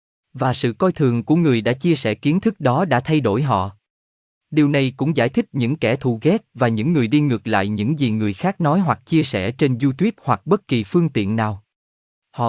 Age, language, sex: 20-39, Vietnamese, male